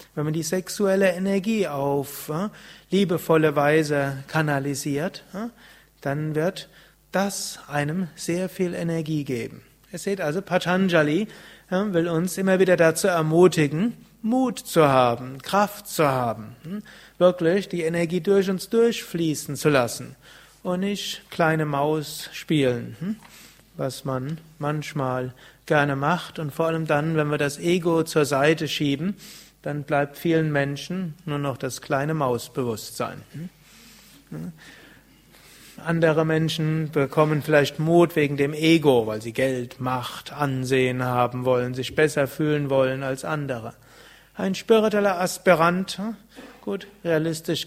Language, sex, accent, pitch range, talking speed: German, male, German, 140-180 Hz, 120 wpm